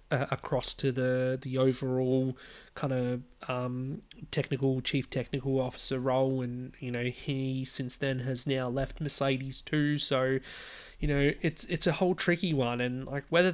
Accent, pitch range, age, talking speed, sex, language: Australian, 125-145 Hz, 20-39, 160 wpm, male, English